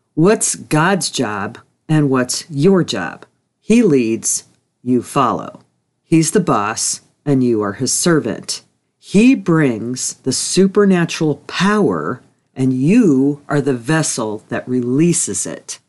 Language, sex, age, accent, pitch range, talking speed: English, female, 40-59, American, 135-180 Hz, 120 wpm